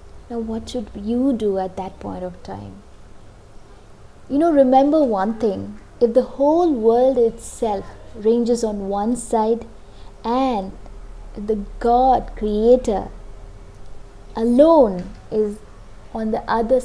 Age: 20-39